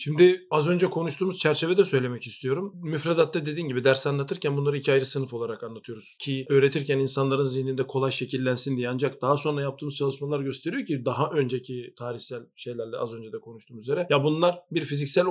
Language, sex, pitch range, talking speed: Turkish, male, 135-190 Hz, 175 wpm